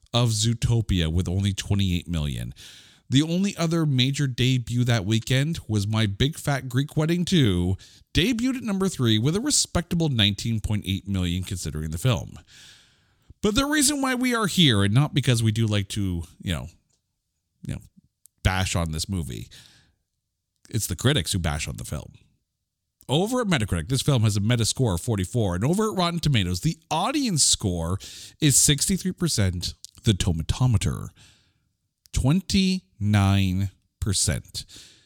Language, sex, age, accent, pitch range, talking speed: English, male, 40-59, American, 95-155 Hz, 150 wpm